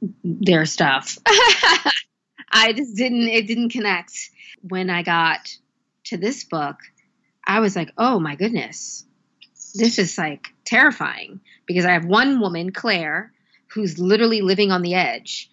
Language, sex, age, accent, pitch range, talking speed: English, female, 20-39, American, 170-215 Hz, 140 wpm